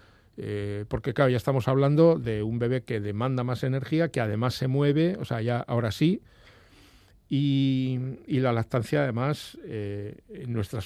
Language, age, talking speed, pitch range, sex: Spanish, 60-79, 165 wpm, 110-145 Hz, male